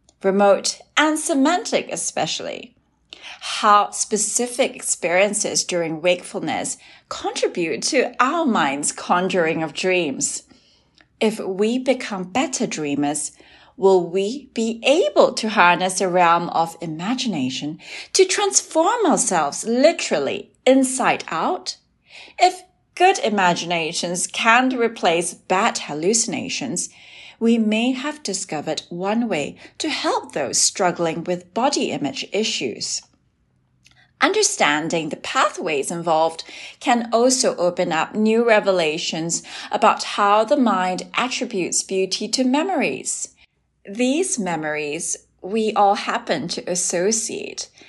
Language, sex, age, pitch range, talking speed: English, female, 30-49, 180-265 Hz, 105 wpm